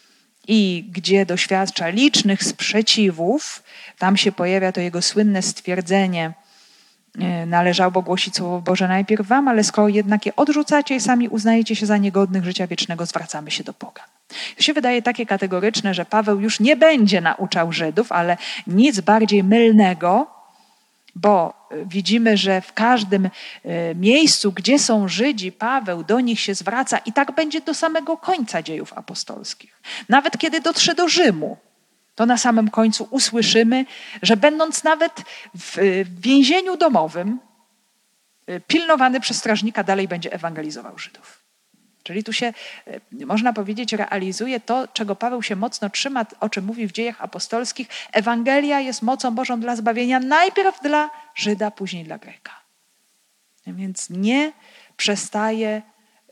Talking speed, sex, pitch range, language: 135 wpm, female, 195-250 Hz, Polish